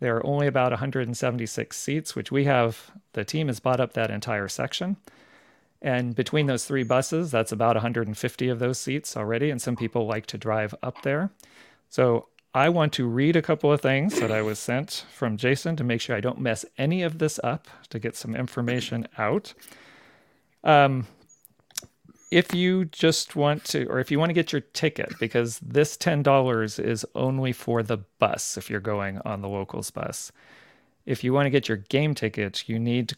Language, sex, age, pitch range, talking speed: English, male, 40-59, 115-145 Hz, 190 wpm